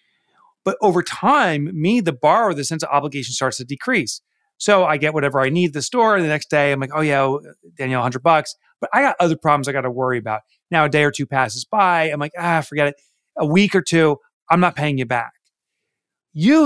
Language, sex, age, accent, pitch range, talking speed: English, male, 30-49, American, 140-200 Hz, 235 wpm